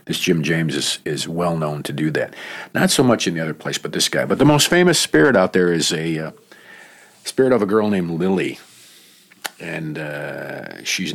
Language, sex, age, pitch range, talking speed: English, male, 50-69, 80-95 Hz, 210 wpm